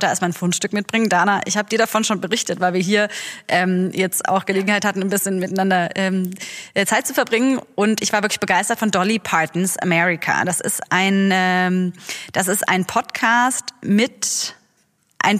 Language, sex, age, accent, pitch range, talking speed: German, female, 20-39, German, 190-220 Hz, 180 wpm